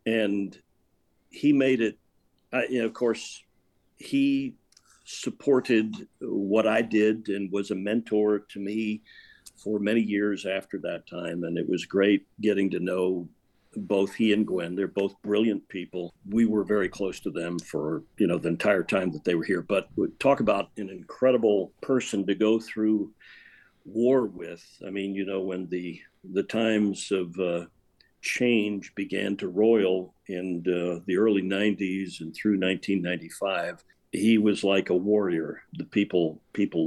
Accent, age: American, 60-79